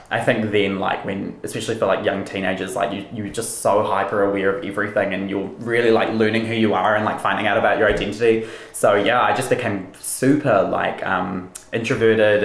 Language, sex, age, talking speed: English, male, 20-39, 205 wpm